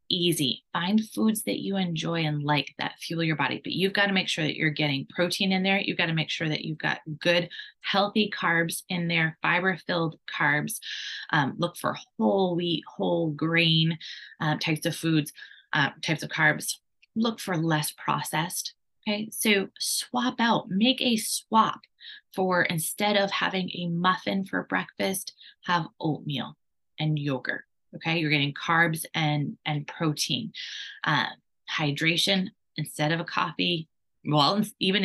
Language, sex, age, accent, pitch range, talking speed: English, female, 20-39, American, 155-190 Hz, 160 wpm